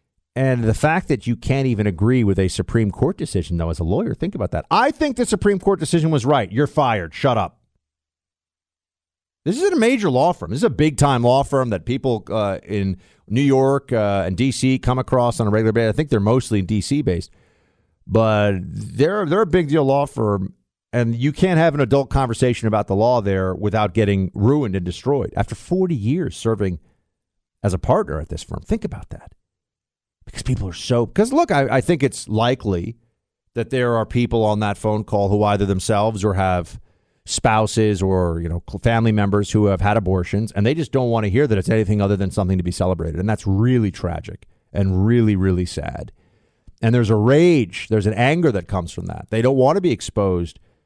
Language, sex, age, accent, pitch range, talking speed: English, male, 50-69, American, 95-130 Hz, 205 wpm